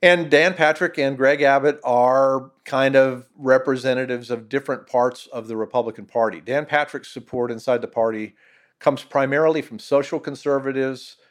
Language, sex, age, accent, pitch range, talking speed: English, male, 50-69, American, 120-145 Hz, 150 wpm